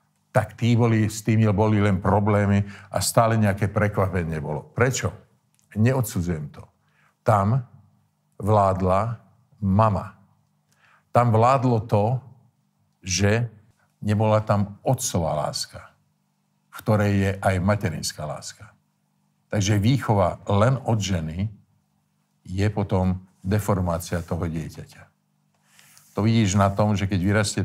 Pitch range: 95-120 Hz